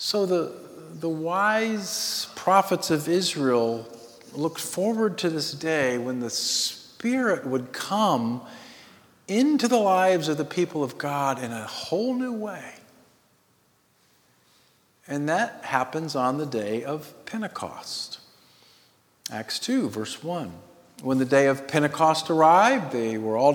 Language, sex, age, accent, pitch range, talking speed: English, male, 50-69, American, 115-165 Hz, 130 wpm